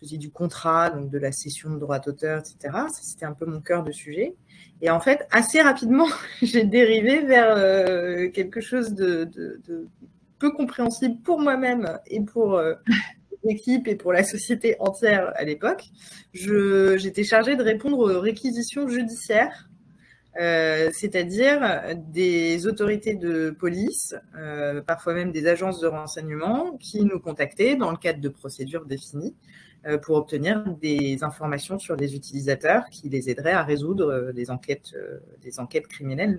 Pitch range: 155-220 Hz